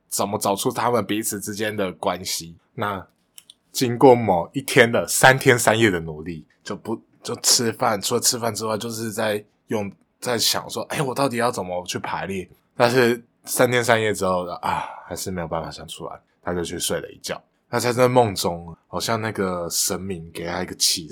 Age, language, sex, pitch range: 20-39, Chinese, male, 95-130 Hz